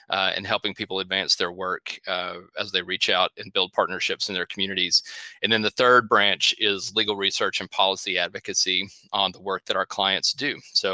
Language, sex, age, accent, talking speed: English, male, 30-49, American, 205 wpm